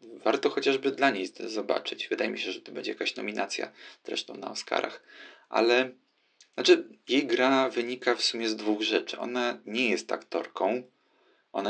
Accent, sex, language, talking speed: native, male, Polish, 160 wpm